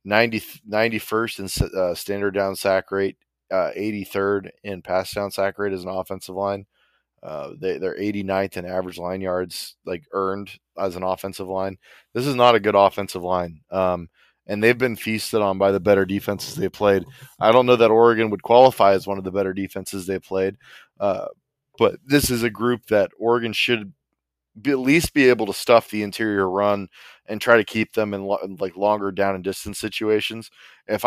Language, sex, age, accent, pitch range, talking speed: English, male, 20-39, American, 95-110 Hz, 185 wpm